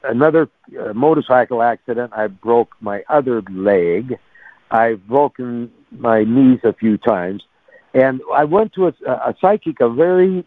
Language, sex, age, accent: English, male, 60-79, American